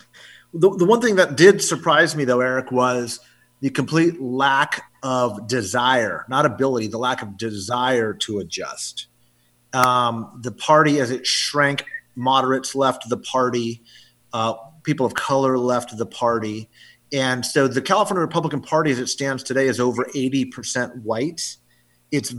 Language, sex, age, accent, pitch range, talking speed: English, male, 30-49, American, 120-145 Hz, 155 wpm